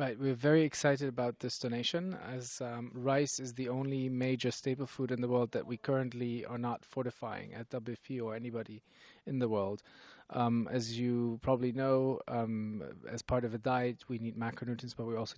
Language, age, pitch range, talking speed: English, 30-49, 115-130 Hz, 190 wpm